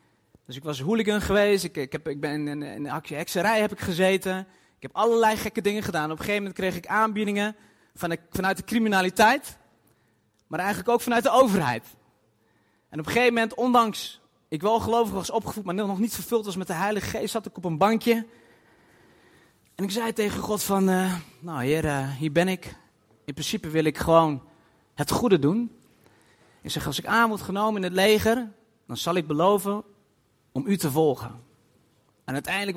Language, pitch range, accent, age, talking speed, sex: Dutch, 155-205 Hz, Dutch, 30-49, 195 wpm, male